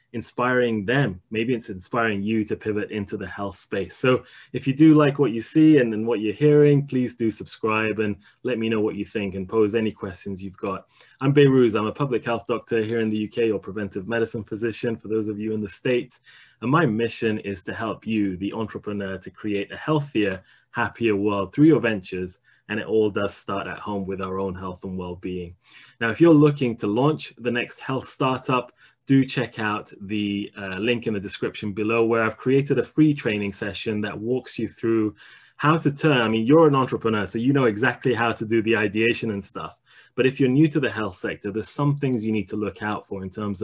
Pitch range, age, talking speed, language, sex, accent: 100-120 Hz, 20-39, 225 wpm, English, male, British